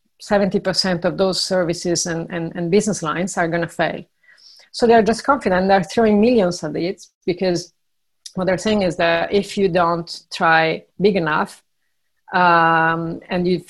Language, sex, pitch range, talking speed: English, female, 165-195 Hz, 160 wpm